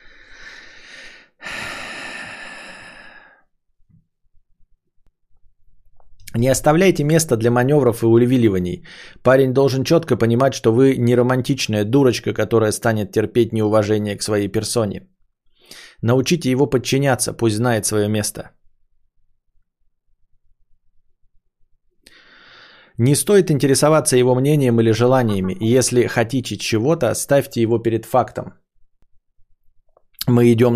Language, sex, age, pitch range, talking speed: Bulgarian, male, 20-39, 105-130 Hz, 90 wpm